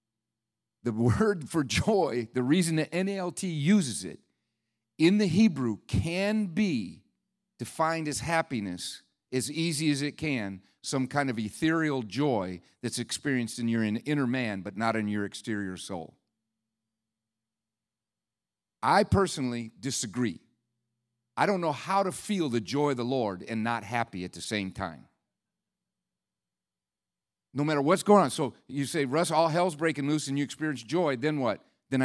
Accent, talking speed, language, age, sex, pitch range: American, 150 wpm, English, 50-69, male, 115-160 Hz